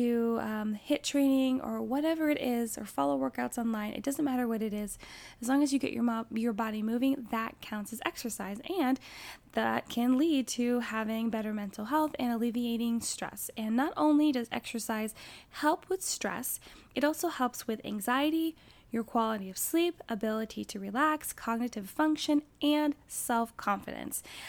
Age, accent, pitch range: 10-29, American, 220-270 Hz